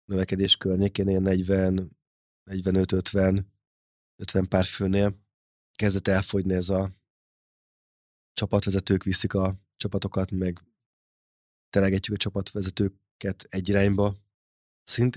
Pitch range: 90-105 Hz